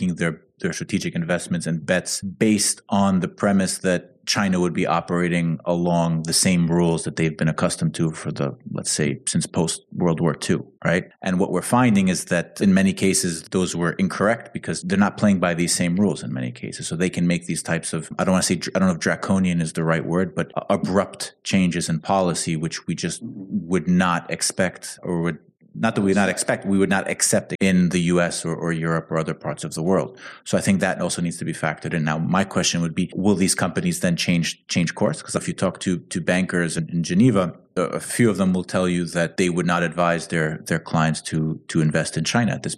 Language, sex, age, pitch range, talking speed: English, male, 30-49, 85-95 Hz, 235 wpm